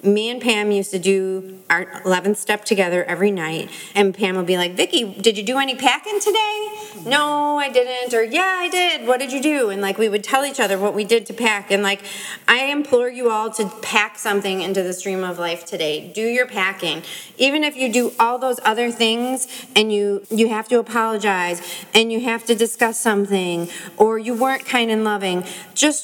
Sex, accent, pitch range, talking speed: female, American, 185-235 Hz, 210 wpm